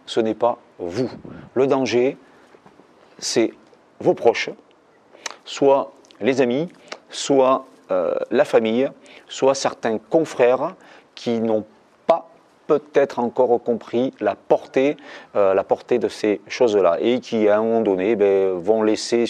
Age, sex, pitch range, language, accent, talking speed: 40-59, male, 95-130 Hz, French, French, 130 wpm